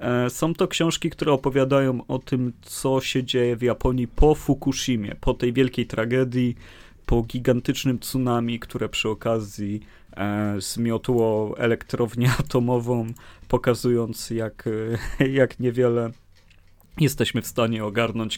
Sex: male